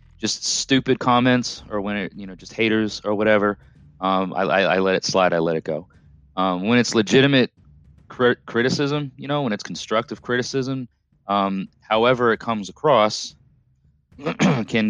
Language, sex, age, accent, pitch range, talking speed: English, male, 30-49, American, 85-110 Hz, 165 wpm